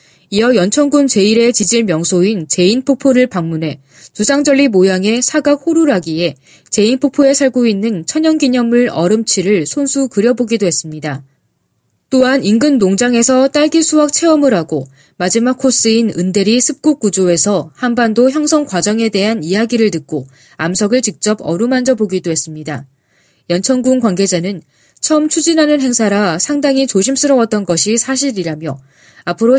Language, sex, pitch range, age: Korean, female, 175-255 Hz, 20-39